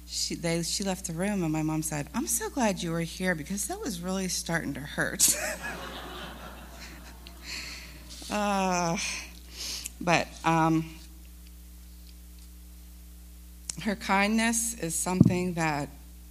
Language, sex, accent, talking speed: English, female, American, 110 wpm